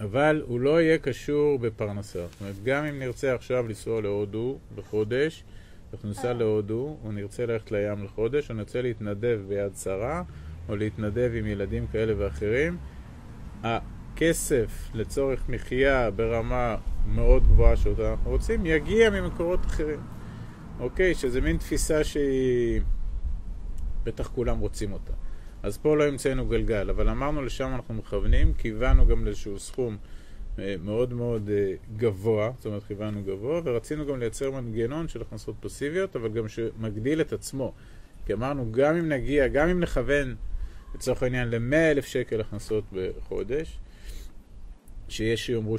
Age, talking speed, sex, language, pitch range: 30-49, 135 wpm, male, Hebrew, 105-135 Hz